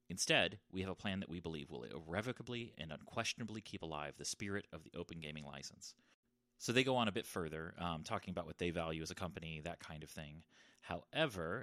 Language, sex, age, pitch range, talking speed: English, male, 30-49, 80-105 Hz, 215 wpm